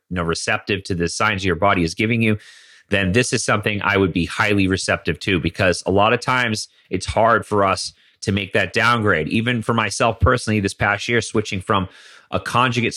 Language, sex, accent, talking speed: English, male, American, 210 wpm